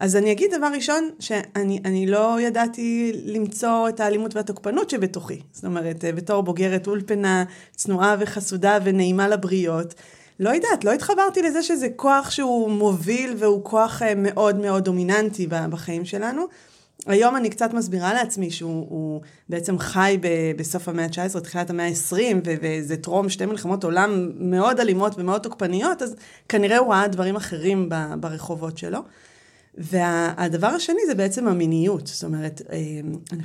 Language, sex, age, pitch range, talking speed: Hebrew, female, 30-49, 170-210 Hz, 145 wpm